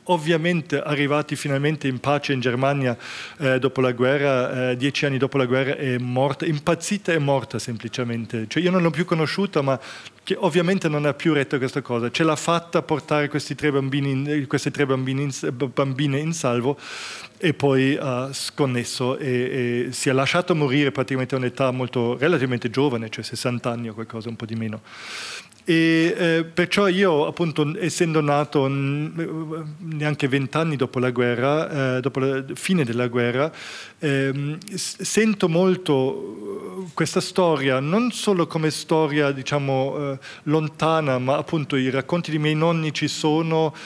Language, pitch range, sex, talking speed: Italian, 130-165 Hz, male, 155 wpm